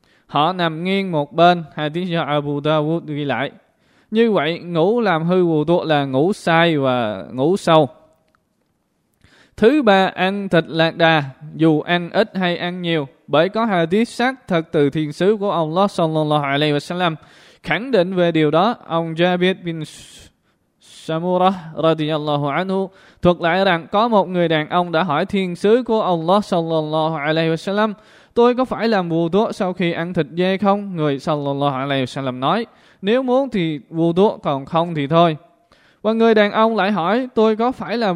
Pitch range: 150-190 Hz